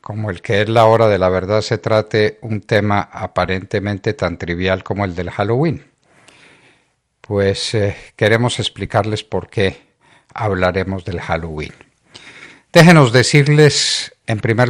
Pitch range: 95-115 Hz